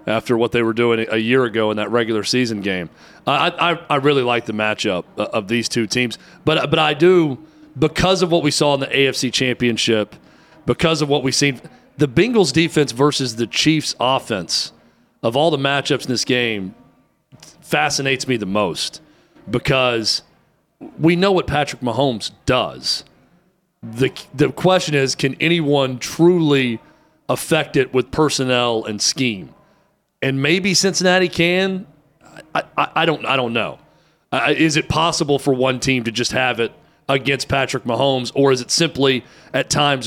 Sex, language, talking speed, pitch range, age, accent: male, English, 165 wpm, 120-150 Hz, 40-59, American